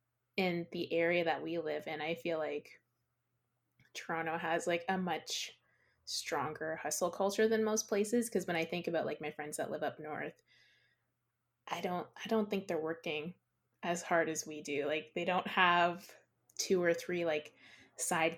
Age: 20-39